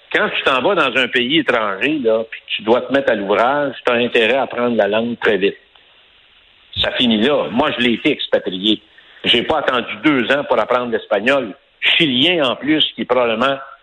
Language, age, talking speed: French, 60-79, 210 wpm